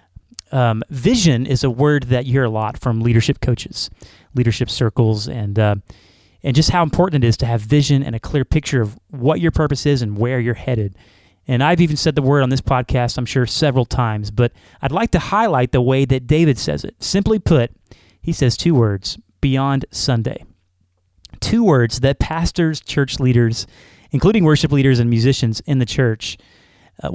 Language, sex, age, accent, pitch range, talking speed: English, male, 30-49, American, 120-150 Hz, 190 wpm